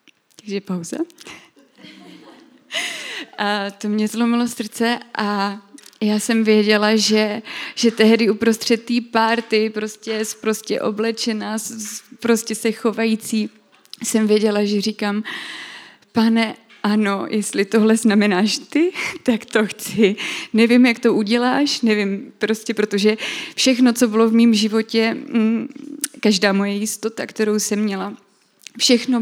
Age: 20-39